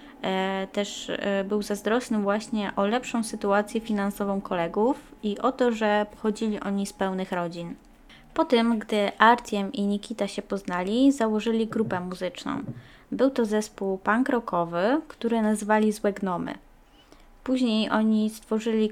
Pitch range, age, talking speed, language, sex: 200-230 Hz, 20-39, 130 wpm, Polish, female